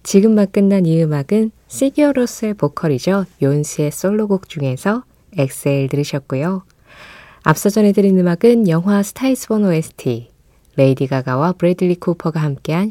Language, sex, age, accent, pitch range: Korean, female, 20-39, native, 140-205 Hz